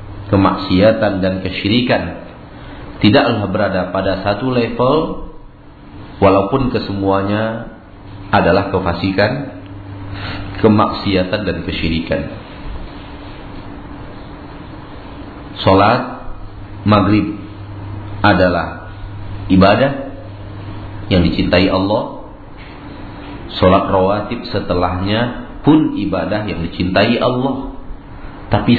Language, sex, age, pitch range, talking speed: Malay, male, 50-69, 95-105 Hz, 65 wpm